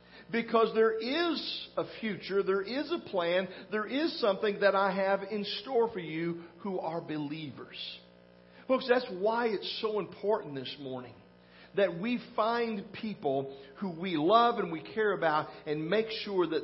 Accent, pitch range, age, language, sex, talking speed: American, 150-220 Hz, 50-69, English, male, 160 wpm